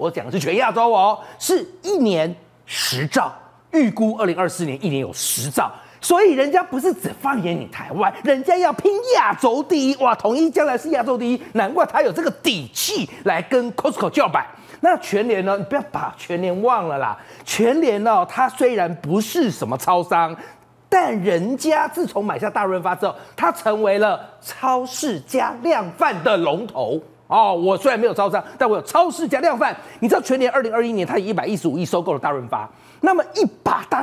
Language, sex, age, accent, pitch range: Chinese, male, 30-49, native, 195-285 Hz